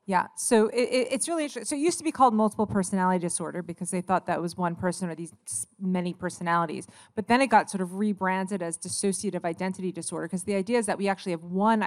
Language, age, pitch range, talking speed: English, 30-49, 180-220 Hz, 240 wpm